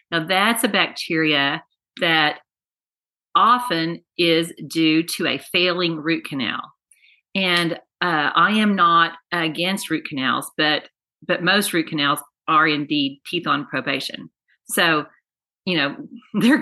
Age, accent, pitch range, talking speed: 40-59, American, 165-220 Hz, 125 wpm